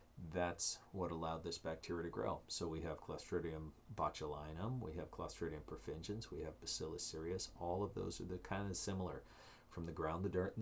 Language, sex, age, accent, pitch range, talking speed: English, male, 40-59, American, 85-105 Hz, 190 wpm